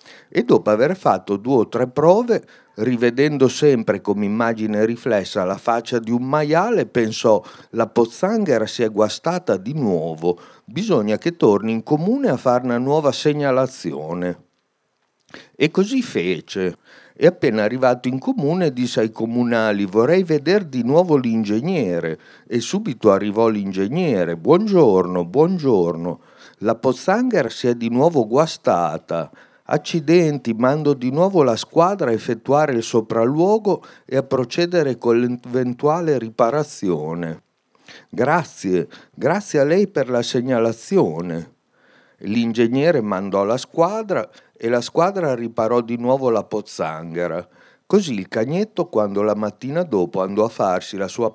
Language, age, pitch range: Italian, 60-79, 105-150 Hz